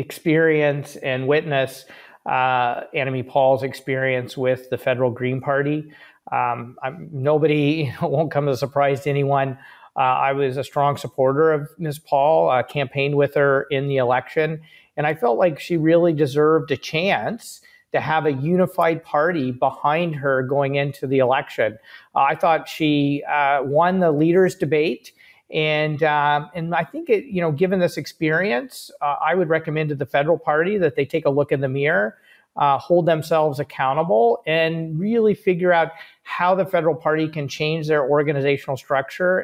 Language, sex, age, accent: English, male, 40-59, American